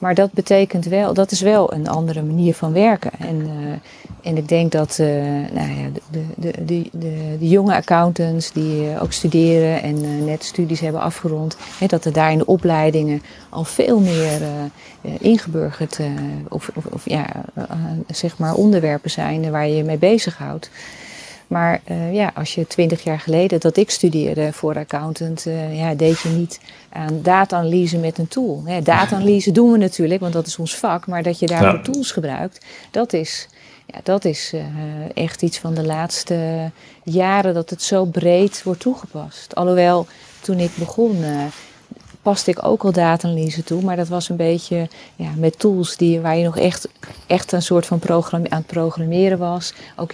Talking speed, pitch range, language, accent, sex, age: 190 wpm, 160-185 Hz, Dutch, Dutch, female, 40-59